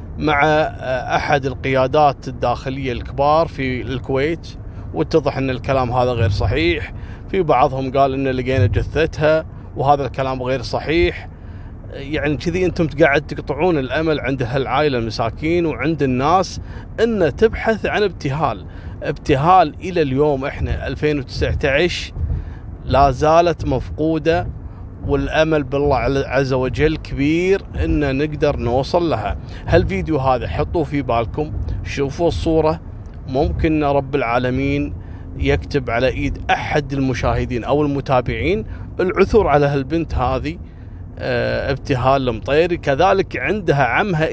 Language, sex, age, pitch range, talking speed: Arabic, male, 30-49, 115-155 Hz, 110 wpm